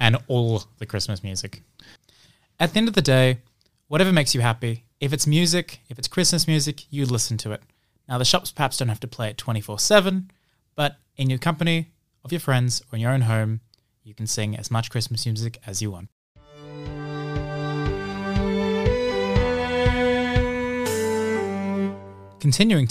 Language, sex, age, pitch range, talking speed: English, male, 20-39, 115-150 Hz, 155 wpm